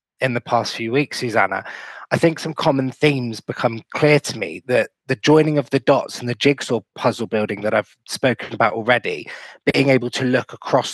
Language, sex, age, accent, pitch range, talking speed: English, male, 20-39, British, 115-135 Hz, 195 wpm